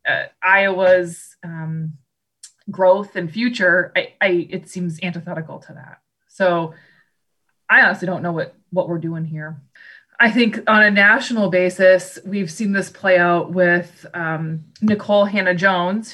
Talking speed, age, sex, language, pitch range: 140 wpm, 20-39, female, English, 170-195 Hz